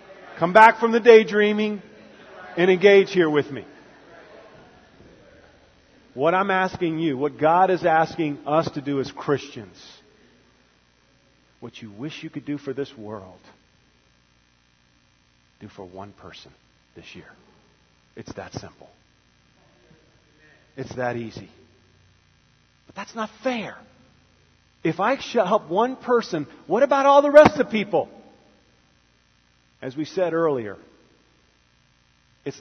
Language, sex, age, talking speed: English, male, 40-59, 120 wpm